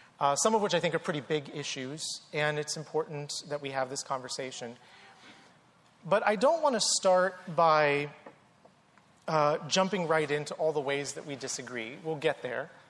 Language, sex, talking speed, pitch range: English, male, 175 wpm, 140-190 Hz